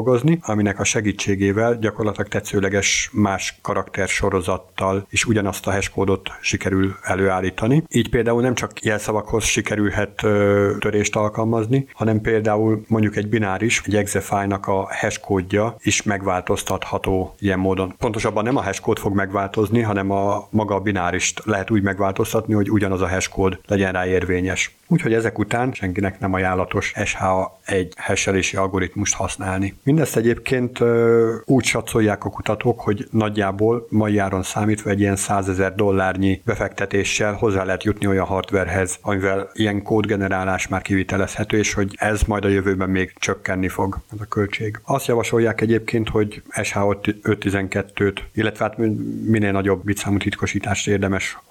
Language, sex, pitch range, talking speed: Hungarian, male, 95-110 Hz, 135 wpm